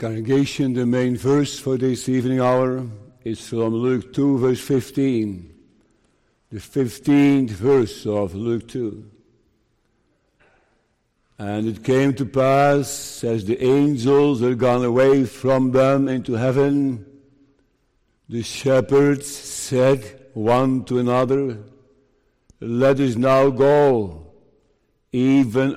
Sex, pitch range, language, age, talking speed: male, 115-140 Hz, English, 60-79, 105 wpm